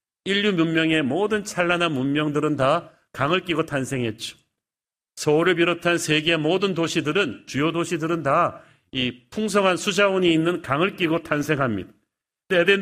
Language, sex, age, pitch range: Korean, male, 40-59, 145-180 Hz